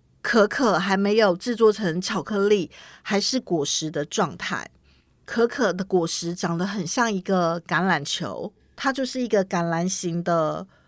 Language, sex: Chinese, female